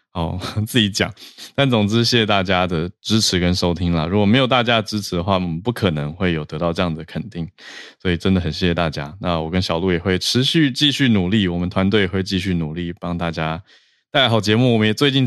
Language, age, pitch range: Chinese, 20-39, 85-110 Hz